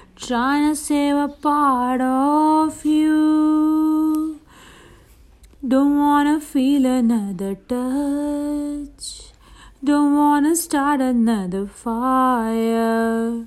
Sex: female